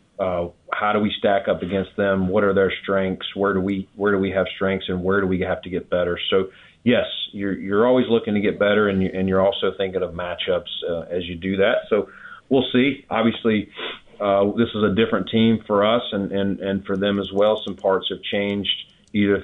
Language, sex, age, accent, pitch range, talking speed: English, male, 30-49, American, 95-105 Hz, 230 wpm